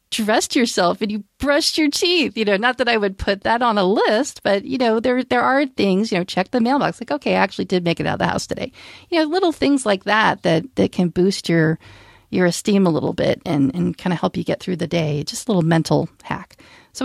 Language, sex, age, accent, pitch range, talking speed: English, female, 40-59, American, 160-205 Hz, 260 wpm